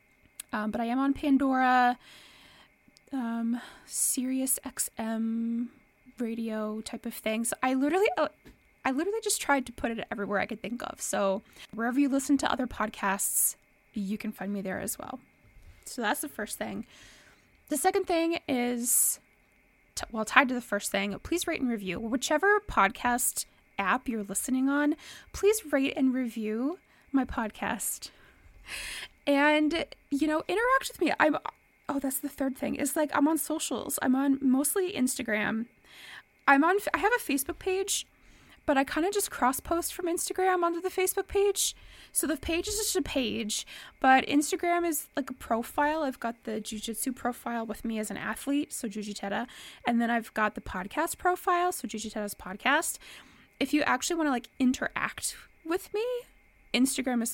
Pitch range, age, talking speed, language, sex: 230-310 Hz, 20-39, 165 wpm, English, female